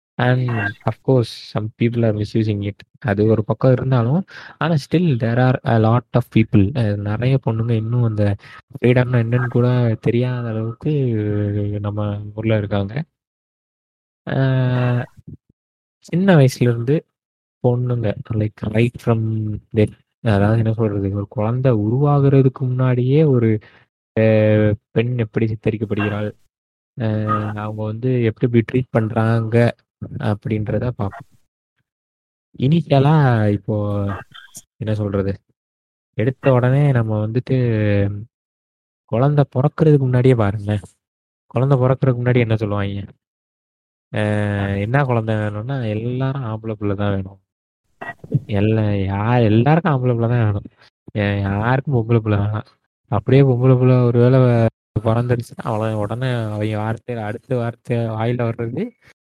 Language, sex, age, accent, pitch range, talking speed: Tamil, male, 20-39, native, 105-125 Hz, 105 wpm